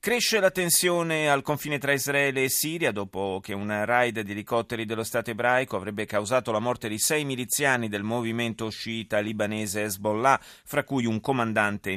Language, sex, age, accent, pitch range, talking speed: Italian, male, 30-49, native, 110-145 Hz, 170 wpm